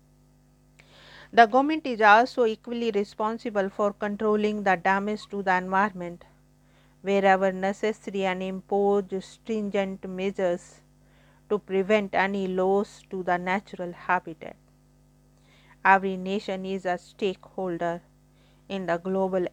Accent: Indian